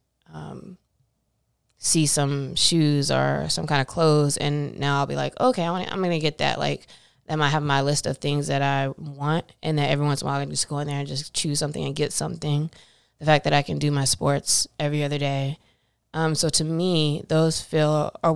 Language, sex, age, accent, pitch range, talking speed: English, female, 20-39, American, 140-160 Hz, 225 wpm